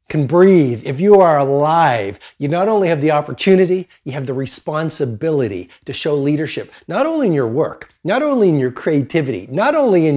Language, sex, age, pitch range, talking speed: Persian, male, 40-59, 130-180 Hz, 190 wpm